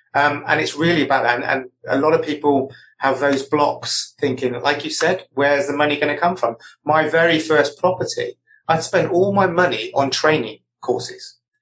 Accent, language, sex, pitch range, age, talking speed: British, English, male, 125-155 Hz, 30-49, 195 wpm